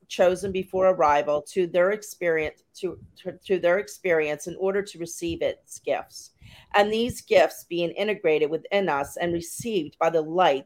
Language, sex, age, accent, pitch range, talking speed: English, female, 40-59, American, 160-210 Hz, 165 wpm